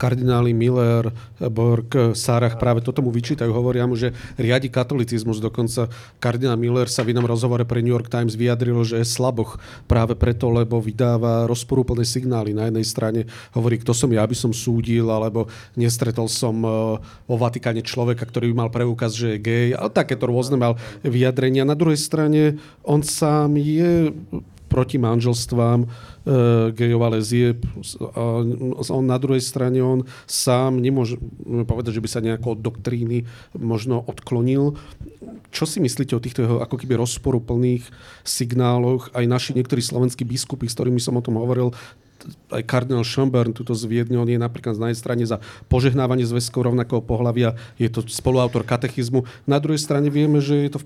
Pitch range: 115-130 Hz